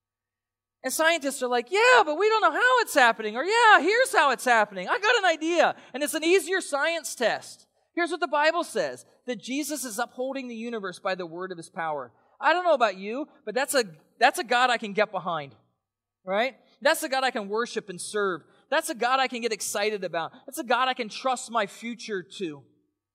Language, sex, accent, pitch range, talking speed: English, male, American, 175-240 Hz, 225 wpm